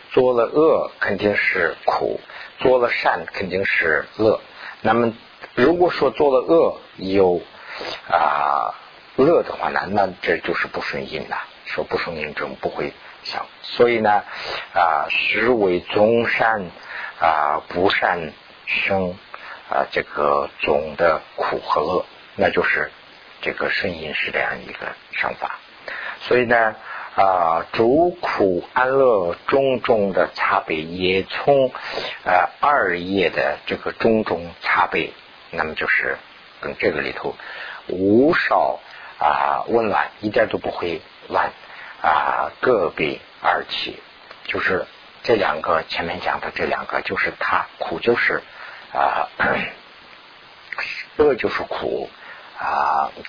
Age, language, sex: 50-69, Chinese, male